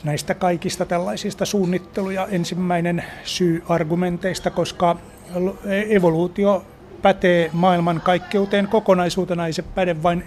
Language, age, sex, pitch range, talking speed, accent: Finnish, 30-49, male, 165-185 Hz, 90 wpm, native